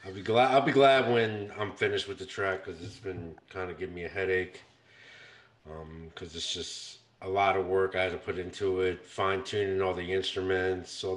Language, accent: English, American